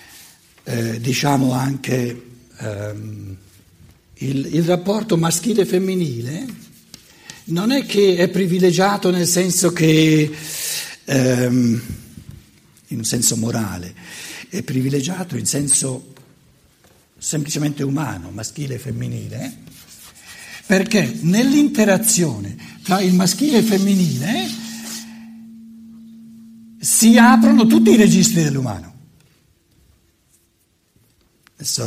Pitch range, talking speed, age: 115-185 Hz, 85 wpm, 60-79